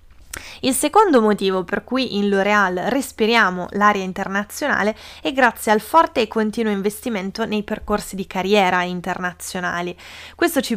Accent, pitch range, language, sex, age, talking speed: native, 190-255 Hz, Italian, female, 20-39, 135 wpm